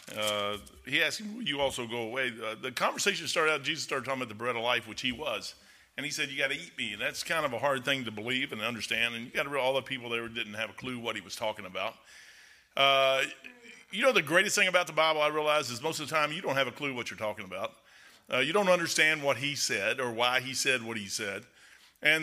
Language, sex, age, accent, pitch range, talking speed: English, male, 40-59, American, 130-185 Hz, 275 wpm